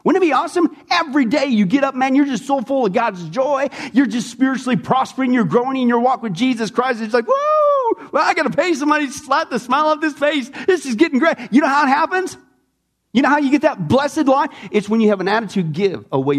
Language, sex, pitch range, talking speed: English, male, 195-280 Hz, 260 wpm